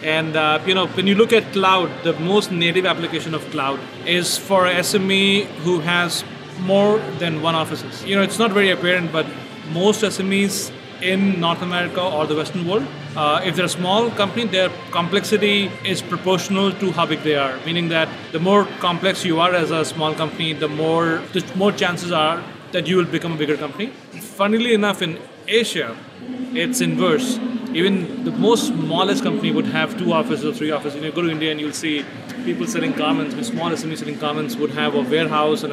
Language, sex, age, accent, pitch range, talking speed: English, male, 30-49, Indian, 155-195 Hz, 195 wpm